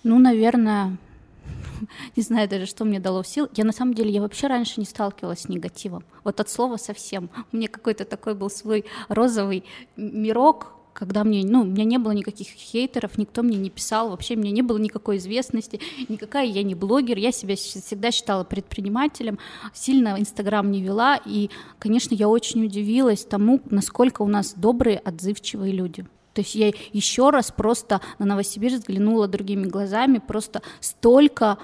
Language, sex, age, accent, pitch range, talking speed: Russian, female, 20-39, native, 205-235 Hz, 170 wpm